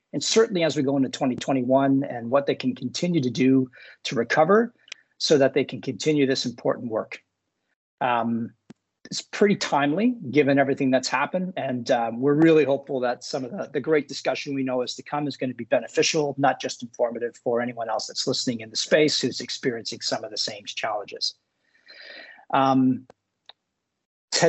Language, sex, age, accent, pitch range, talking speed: English, male, 40-59, American, 130-170 Hz, 180 wpm